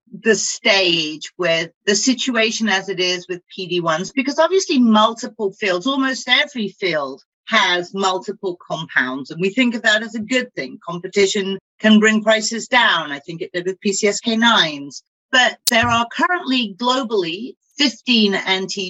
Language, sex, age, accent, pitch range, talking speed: English, female, 40-59, British, 175-235 Hz, 150 wpm